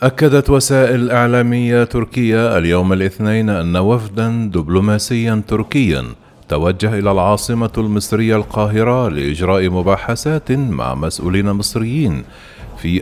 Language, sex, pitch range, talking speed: Arabic, male, 90-120 Hz, 95 wpm